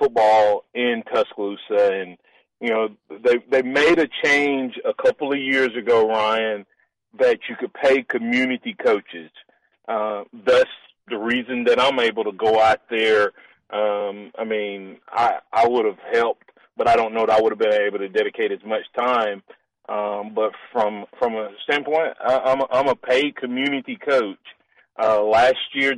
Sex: male